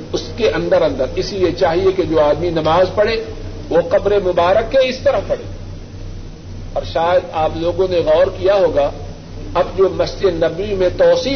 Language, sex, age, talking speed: Urdu, male, 50-69, 175 wpm